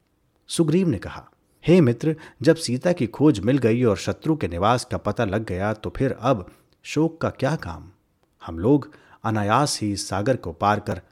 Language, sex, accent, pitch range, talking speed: Hindi, male, native, 95-135 Hz, 185 wpm